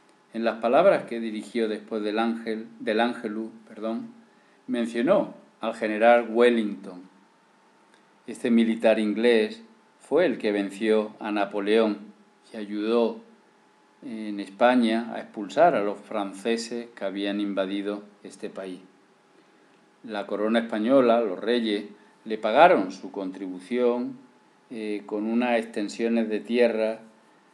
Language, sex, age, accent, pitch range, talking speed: Spanish, male, 50-69, Spanish, 105-120 Hz, 115 wpm